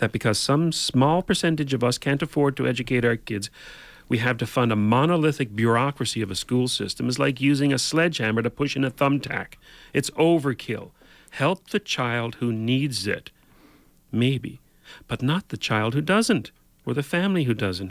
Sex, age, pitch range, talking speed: male, 40-59, 110-145 Hz, 180 wpm